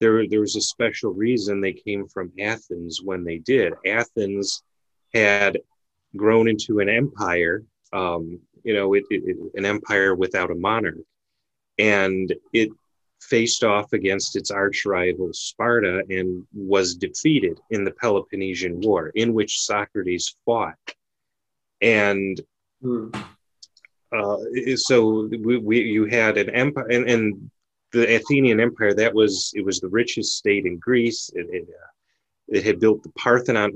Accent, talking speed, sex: American, 140 wpm, male